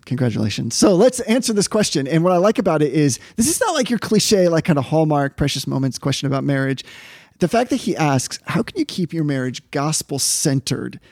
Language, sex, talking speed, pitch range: English, male, 215 wpm, 145-195 Hz